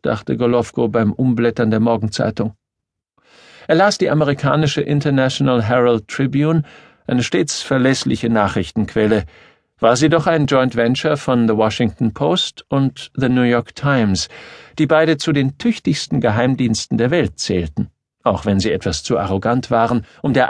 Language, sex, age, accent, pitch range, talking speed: German, male, 50-69, German, 105-140 Hz, 145 wpm